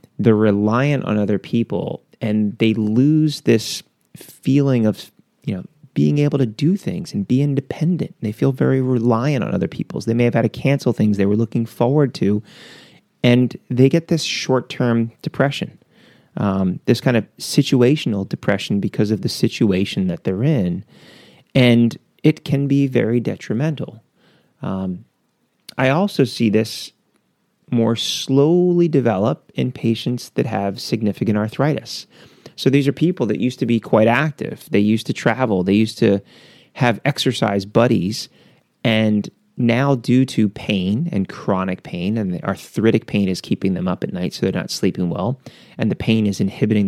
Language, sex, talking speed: English, male, 165 wpm